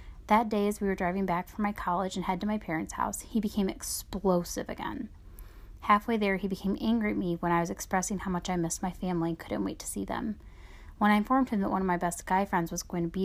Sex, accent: female, American